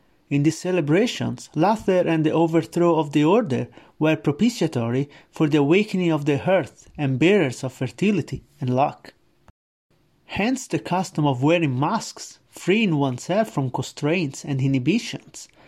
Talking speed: 140 wpm